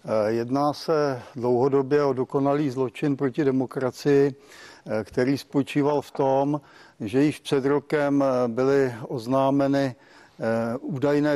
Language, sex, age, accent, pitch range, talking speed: Czech, male, 60-79, native, 125-140 Hz, 100 wpm